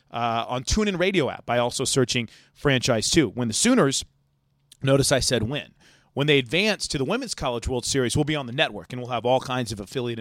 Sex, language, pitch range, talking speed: male, English, 130-165 Hz, 225 wpm